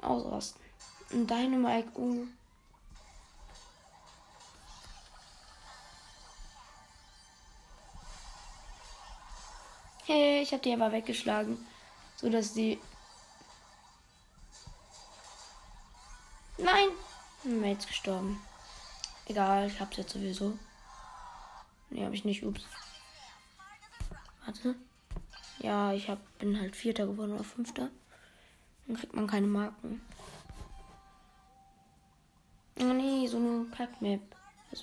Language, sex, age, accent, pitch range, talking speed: English, female, 20-39, German, 200-240 Hz, 80 wpm